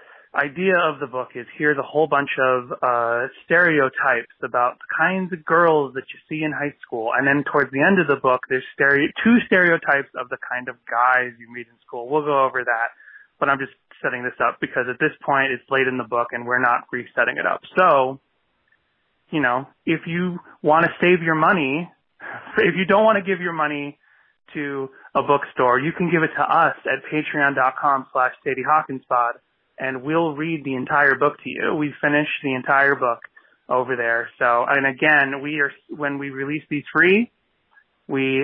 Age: 30-49